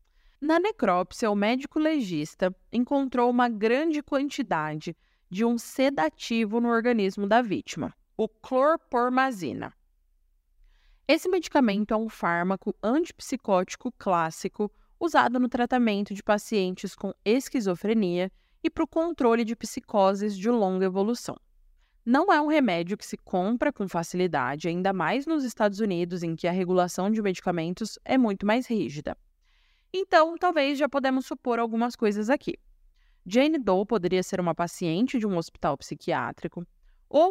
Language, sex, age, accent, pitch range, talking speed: Portuguese, female, 20-39, Brazilian, 180-260 Hz, 135 wpm